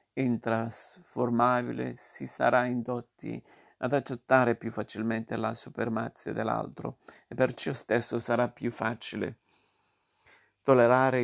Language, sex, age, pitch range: Italian, male, 50-69, 115-125 Hz